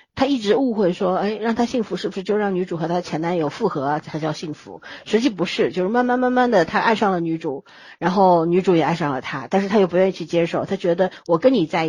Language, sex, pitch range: Chinese, female, 170-240 Hz